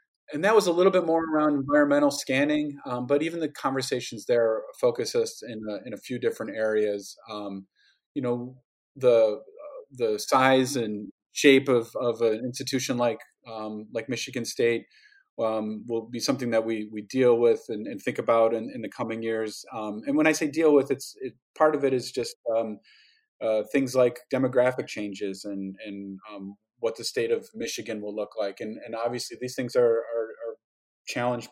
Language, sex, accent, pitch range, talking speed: English, male, American, 115-145 Hz, 190 wpm